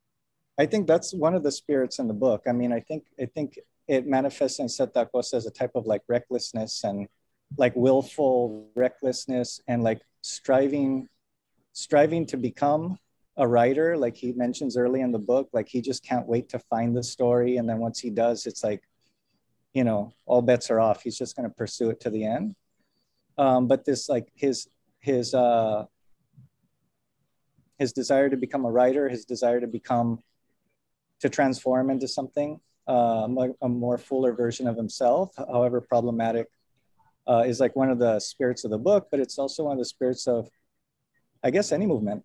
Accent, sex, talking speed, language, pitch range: American, male, 180 wpm, English, 120-140 Hz